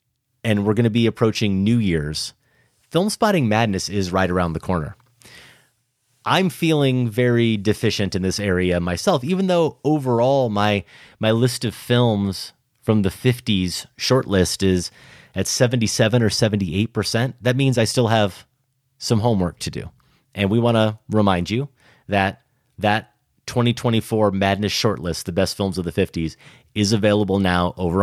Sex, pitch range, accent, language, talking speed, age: male, 95-125 Hz, American, English, 150 wpm, 30-49